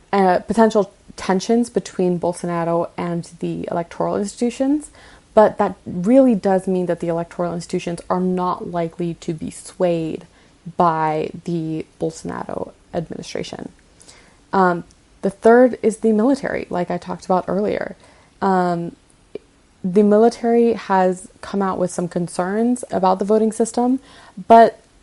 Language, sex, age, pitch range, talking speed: English, female, 20-39, 170-190 Hz, 125 wpm